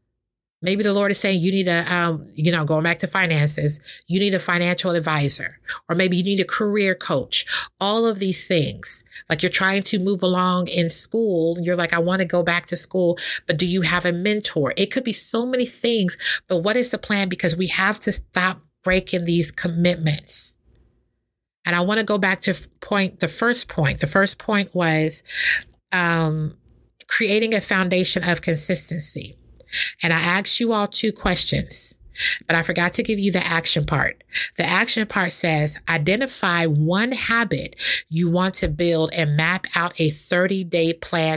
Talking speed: 185 wpm